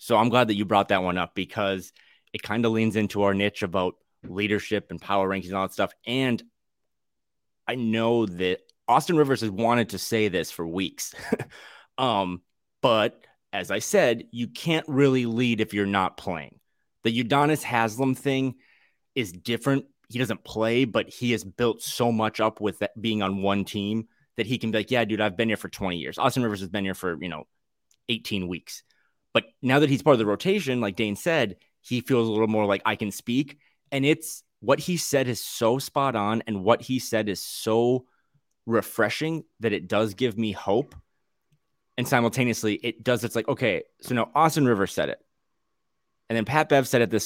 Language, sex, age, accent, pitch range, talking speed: English, male, 30-49, American, 100-130 Hz, 200 wpm